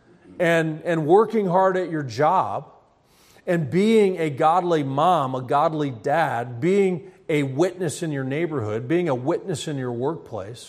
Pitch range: 140-180 Hz